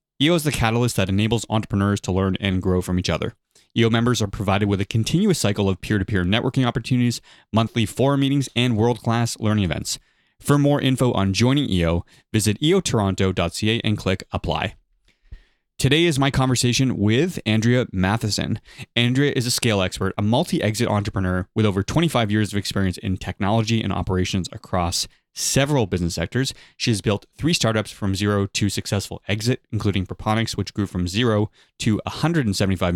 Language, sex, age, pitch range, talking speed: English, male, 20-39, 95-120 Hz, 165 wpm